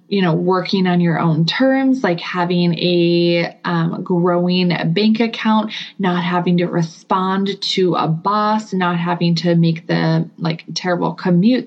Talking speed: 150 wpm